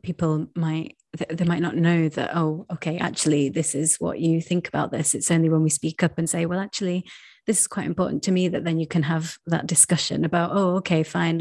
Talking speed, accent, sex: 230 wpm, British, female